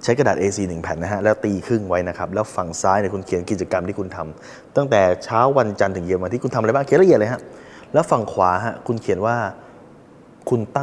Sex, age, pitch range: male, 20-39, 100-140 Hz